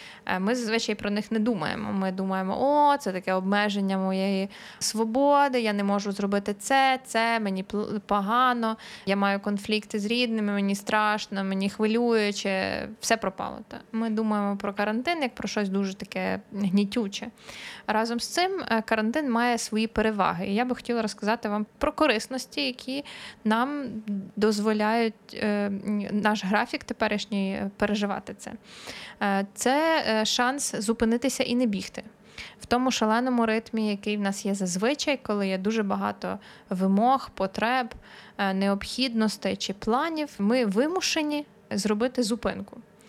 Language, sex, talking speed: Ukrainian, female, 130 wpm